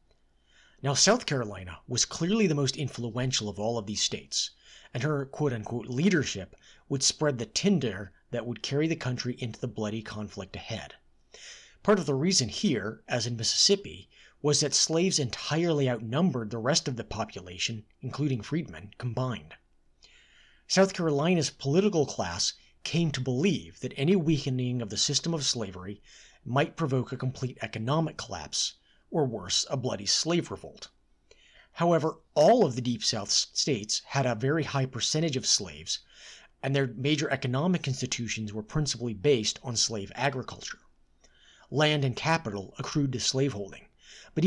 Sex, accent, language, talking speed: male, American, English, 150 wpm